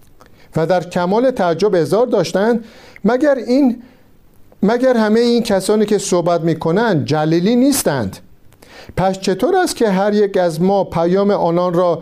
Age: 50-69